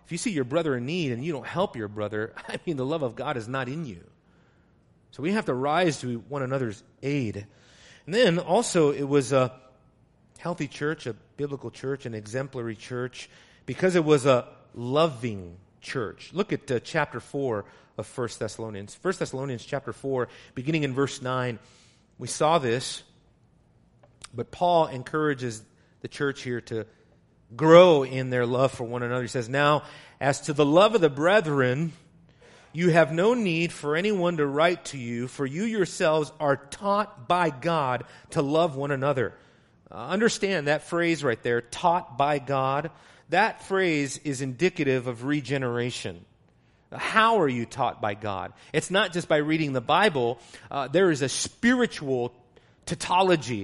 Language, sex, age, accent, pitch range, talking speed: English, male, 40-59, American, 125-165 Hz, 170 wpm